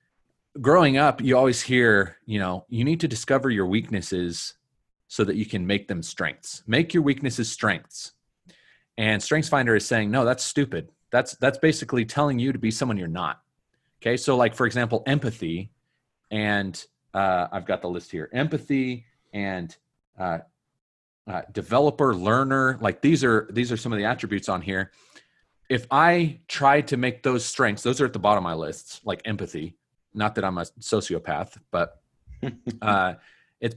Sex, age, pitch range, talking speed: male, 30-49, 105-145 Hz, 170 wpm